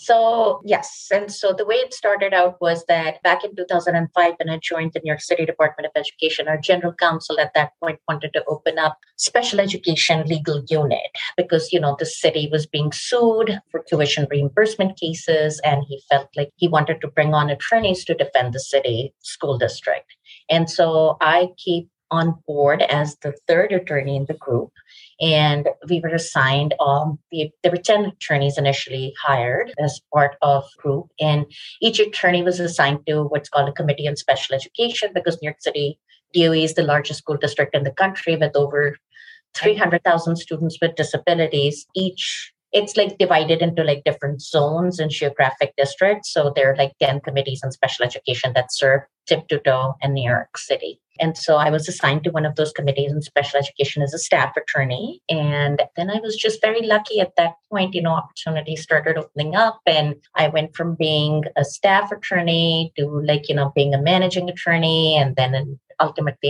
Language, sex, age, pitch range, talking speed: English, female, 30-49, 145-175 Hz, 190 wpm